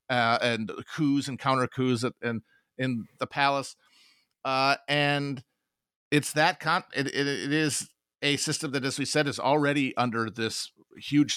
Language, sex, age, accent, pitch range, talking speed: English, male, 40-59, American, 115-145 Hz, 170 wpm